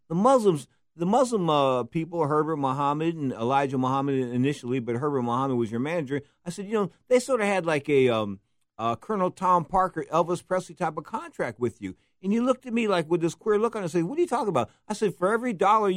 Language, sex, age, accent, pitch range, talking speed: English, male, 50-69, American, 120-185 Hz, 240 wpm